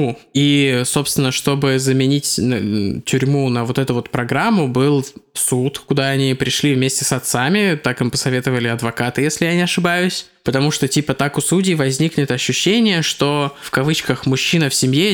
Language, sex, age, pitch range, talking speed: Russian, male, 20-39, 130-150 Hz, 160 wpm